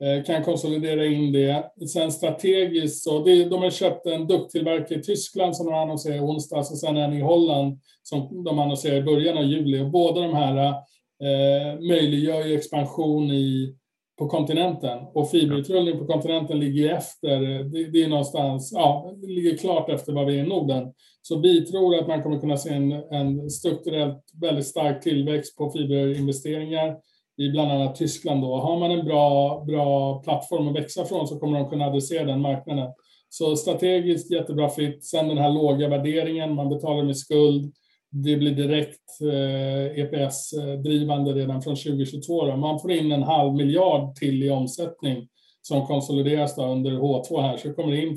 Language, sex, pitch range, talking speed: Swedish, male, 140-160 Hz, 170 wpm